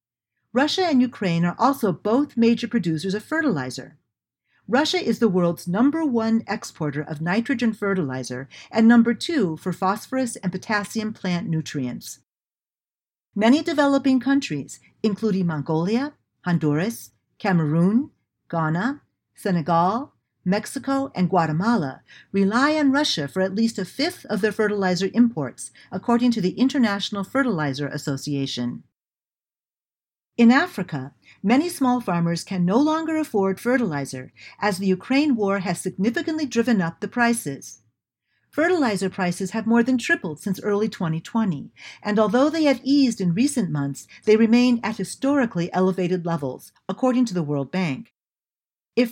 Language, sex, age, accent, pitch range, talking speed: English, female, 50-69, American, 170-245 Hz, 130 wpm